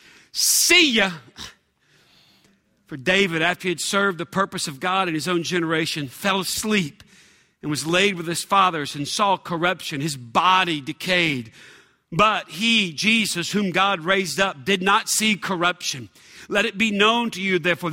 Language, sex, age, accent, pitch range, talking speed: English, male, 50-69, American, 185-245 Hz, 160 wpm